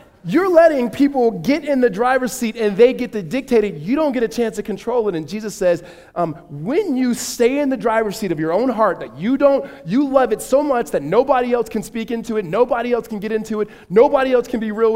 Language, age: English, 20-39